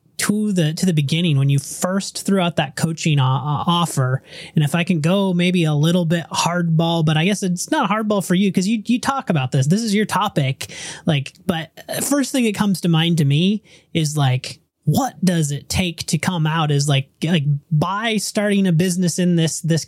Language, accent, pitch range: English, American, 150-190 Hz